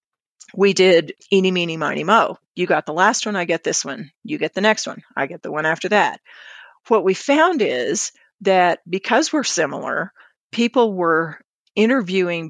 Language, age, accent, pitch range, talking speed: English, 50-69, American, 165-215 Hz, 180 wpm